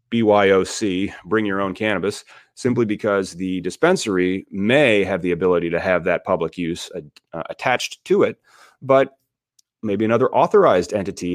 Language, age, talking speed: English, 30-49, 145 wpm